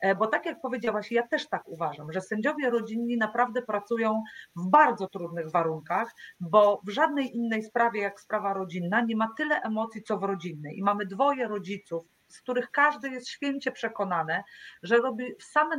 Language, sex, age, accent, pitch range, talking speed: Polish, female, 40-59, native, 200-250 Hz, 170 wpm